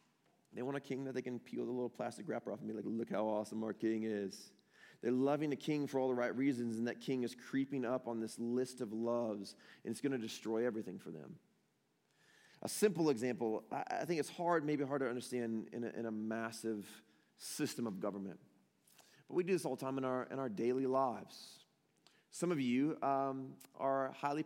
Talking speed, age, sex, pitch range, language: 215 wpm, 30-49, male, 125-165 Hz, English